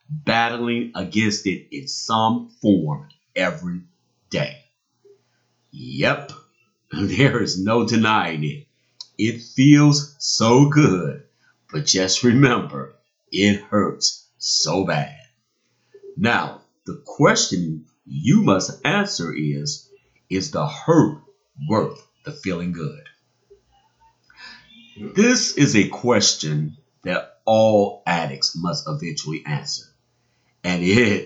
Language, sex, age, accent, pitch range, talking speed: English, male, 50-69, American, 95-145 Hz, 100 wpm